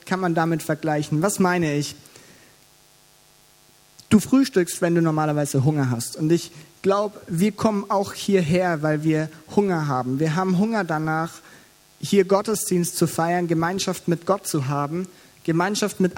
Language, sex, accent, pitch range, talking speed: German, male, German, 155-185 Hz, 150 wpm